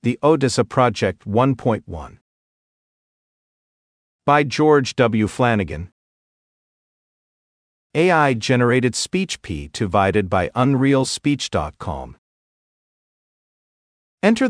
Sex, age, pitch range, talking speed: male, 50-69, 100-130 Hz, 60 wpm